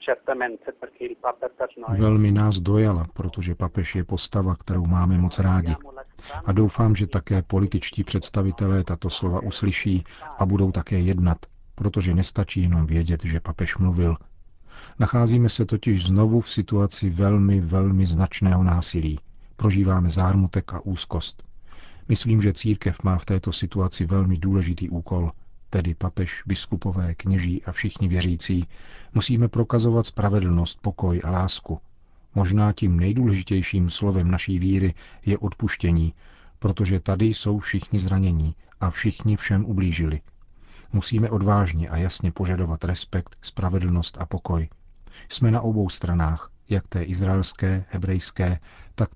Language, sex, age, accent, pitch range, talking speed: Czech, male, 40-59, native, 85-100 Hz, 125 wpm